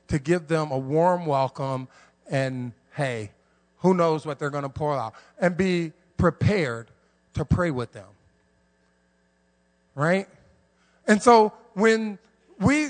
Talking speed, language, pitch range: 130 wpm, English, 115-185 Hz